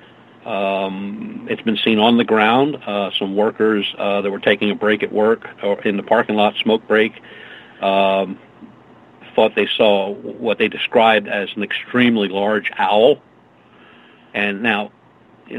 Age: 50-69